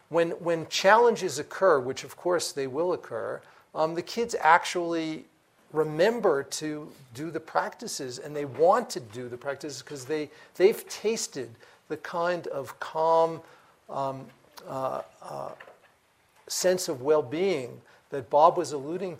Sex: male